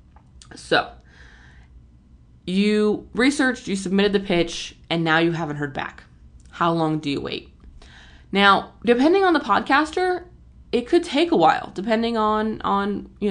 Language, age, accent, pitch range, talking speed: English, 20-39, American, 150-195 Hz, 145 wpm